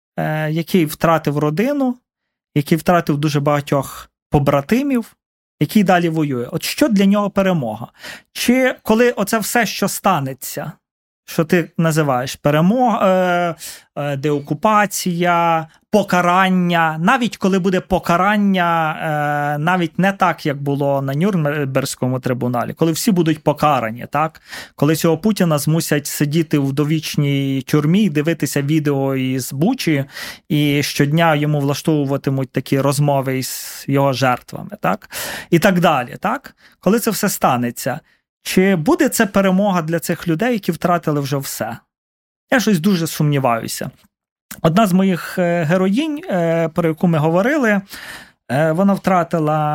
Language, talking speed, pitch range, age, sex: Ukrainian, 120 wpm, 150-205 Hz, 30-49, male